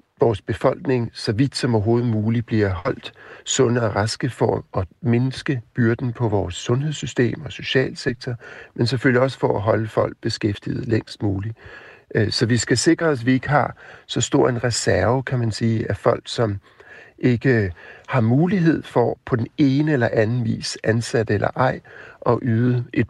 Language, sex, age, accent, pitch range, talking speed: Danish, male, 60-79, native, 110-130 Hz, 170 wpm